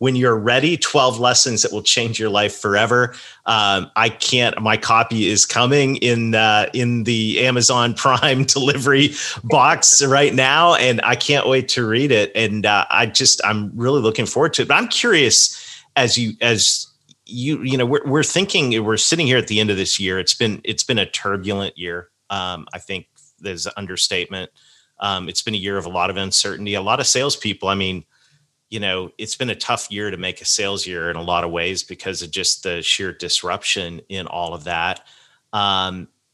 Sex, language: male, English